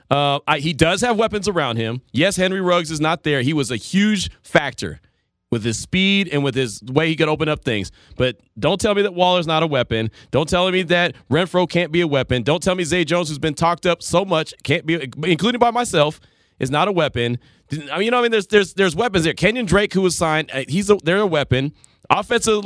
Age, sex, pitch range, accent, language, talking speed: 30-49, male, 140-215 Hz, American, English, 240 wpm